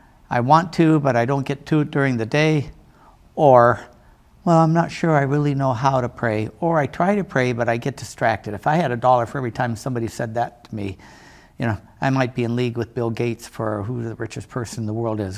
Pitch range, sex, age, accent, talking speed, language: 110-135 Hz, male, 60-79, American, 250 wpm, English